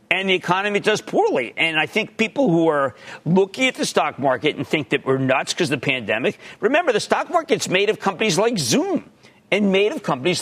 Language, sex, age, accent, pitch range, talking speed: English, male, 40-59, American, 135-215 Hz, 220 wpm